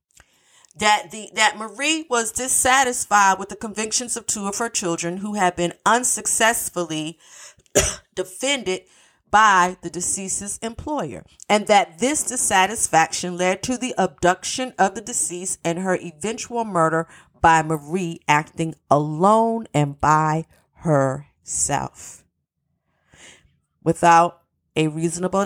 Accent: American